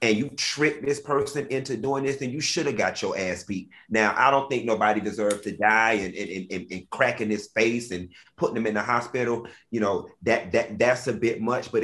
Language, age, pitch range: English, 30-49, 105-130 Hz